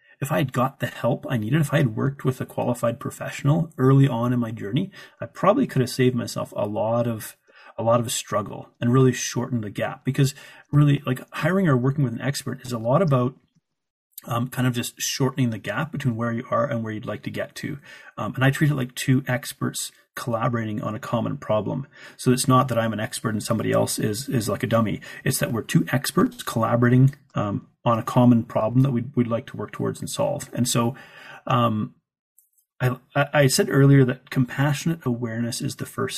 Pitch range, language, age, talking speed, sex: 120-140 Hz, English, 30-49, 215 wpm, male